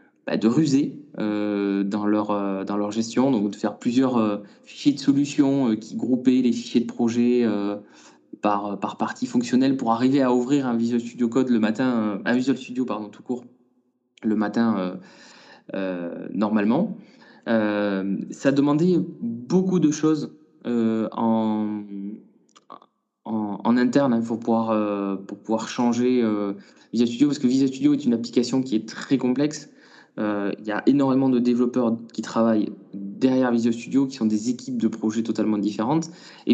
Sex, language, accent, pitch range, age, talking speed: male, French, French, 105-130 Hz, 20-39, 170 wpm